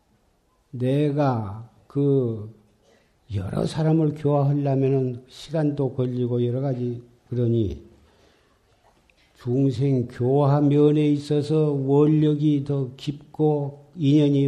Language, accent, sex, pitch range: Korean, native, male, 115-145 Hz